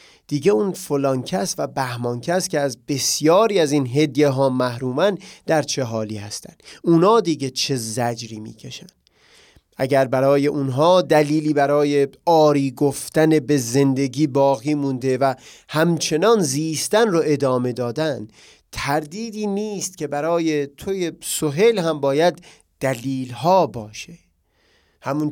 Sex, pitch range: male, 130-165 Hz